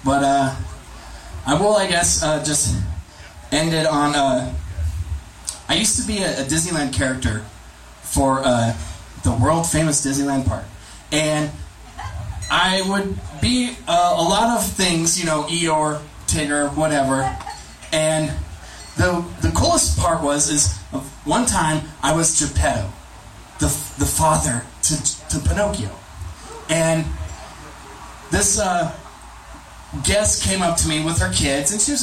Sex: male